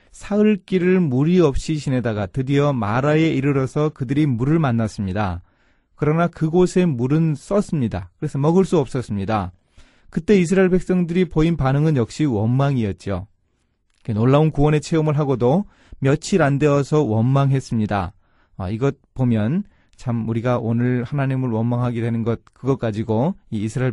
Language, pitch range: Korean, 115-160 Hz